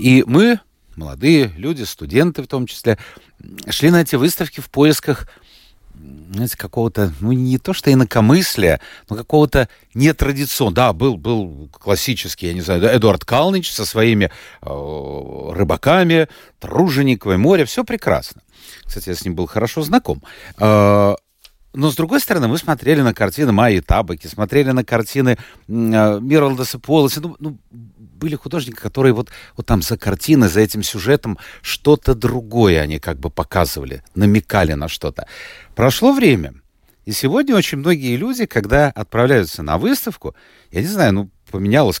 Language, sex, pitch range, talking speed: Russian, male, 95-145 Hz, 140 wpm